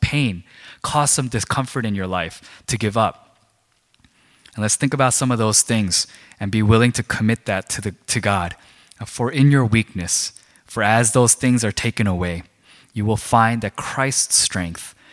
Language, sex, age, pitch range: Korean, male, 20-39, 90-115 Hz